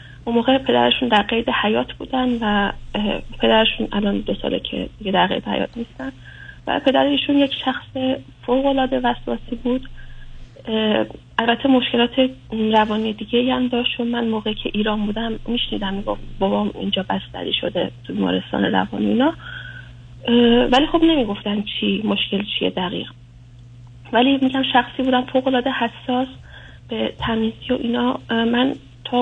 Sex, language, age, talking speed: female, Persian, 30-49, 130 wpm